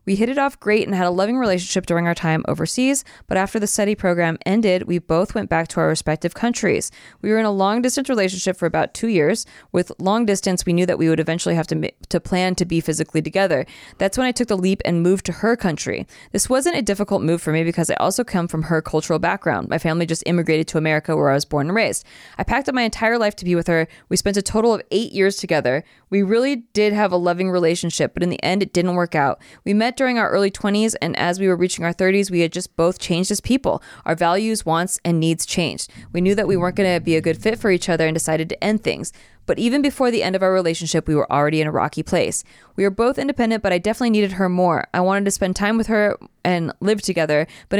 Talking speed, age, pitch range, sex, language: 260 wpm, 20-39, 170-215 Hz, female, English